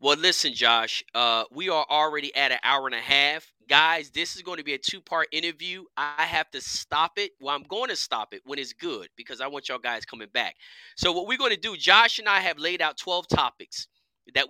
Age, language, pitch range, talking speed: 30-49, English, 135-180 Hz, 240 wpm